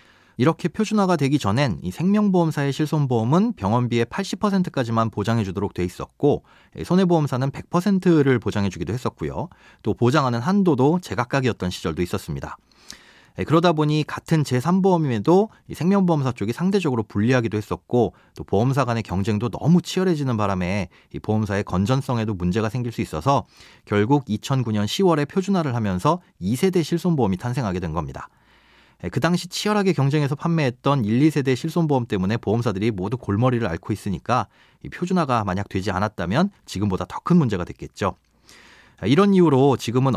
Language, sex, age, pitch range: Korean, male, 30-49, 105-165 Hz